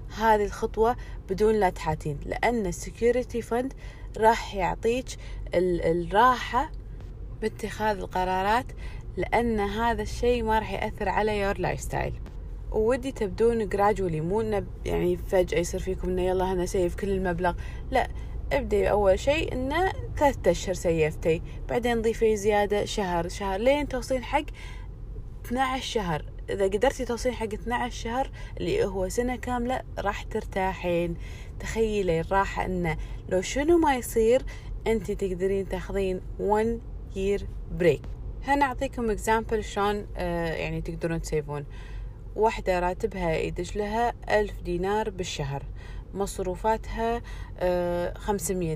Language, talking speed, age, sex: Arabic, 115 wpm, 20-39, female